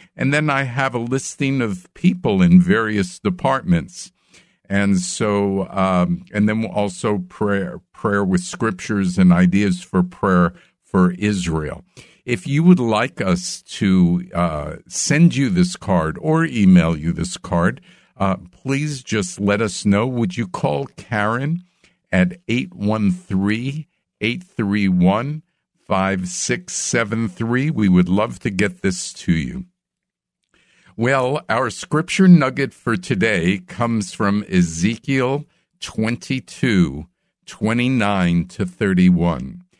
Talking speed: 120 wpm